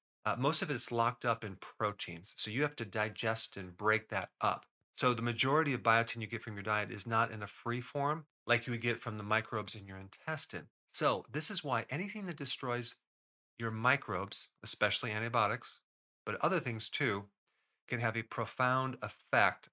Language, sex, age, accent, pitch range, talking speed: English, male, 40-59, American, 105-130 Hz, 190 wpm